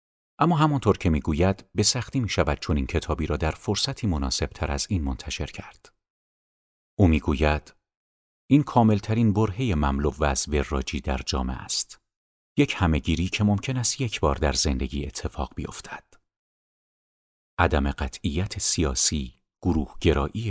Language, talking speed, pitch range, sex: Persian, 140 wpm, 75-105 Hz, male